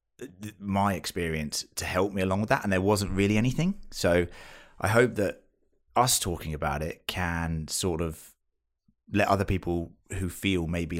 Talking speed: 165 wpm